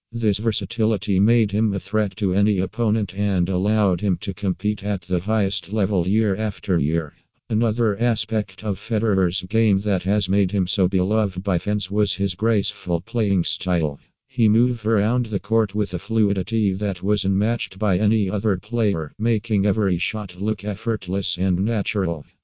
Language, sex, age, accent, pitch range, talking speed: English, male, 50-69, American, 95-110 Hz, 165 wpm